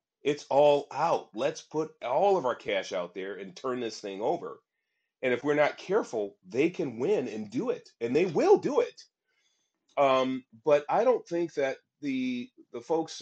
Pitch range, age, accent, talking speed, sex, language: 115-190 Hz, 30-49, American, 185 wpm, male, English